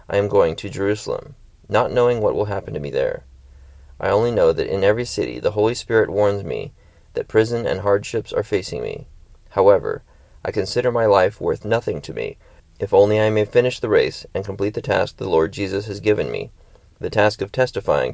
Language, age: English, 30-49